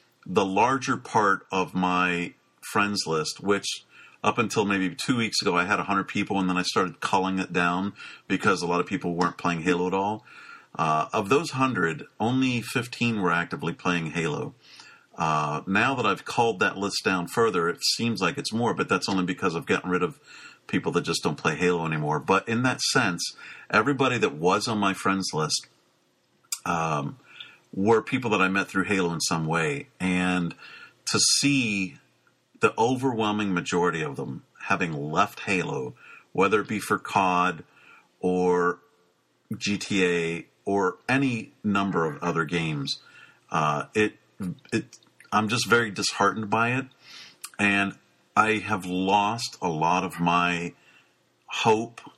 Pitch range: 90-105 Hz